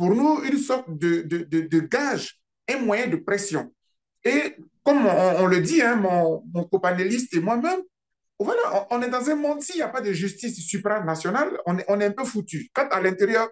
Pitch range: 190-280 Hz